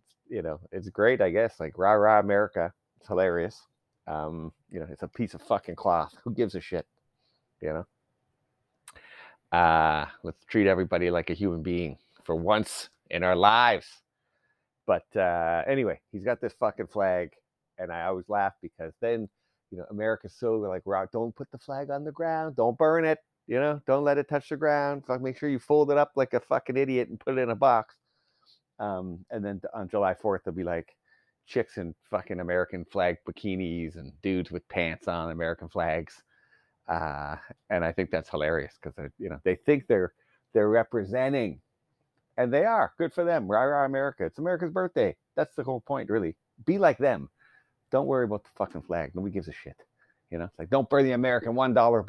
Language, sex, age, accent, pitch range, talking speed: English, male, 30-49, American, 90-135 Hz, 195 wpm